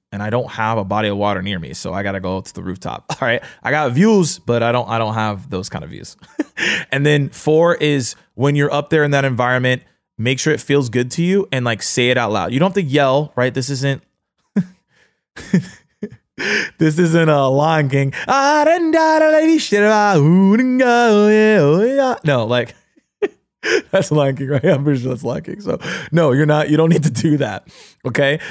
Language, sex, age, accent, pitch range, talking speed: English, male, 20-39, American, 105-150 Hz, 195 wpm